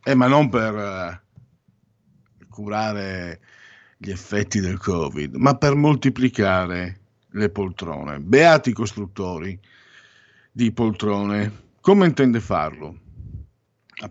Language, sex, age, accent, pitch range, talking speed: Italian, male, 50-69, native, 100-125 Hz, 95 wpm